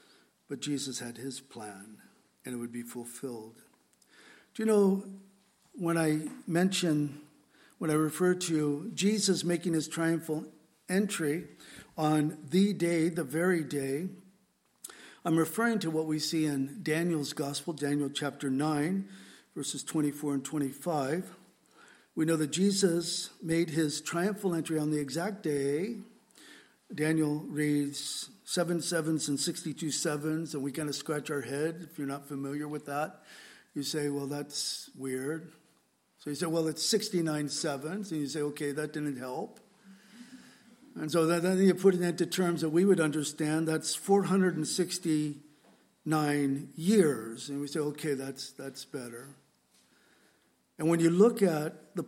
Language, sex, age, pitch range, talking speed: English, male, 60-79, 145-175 Hz, 145 wpm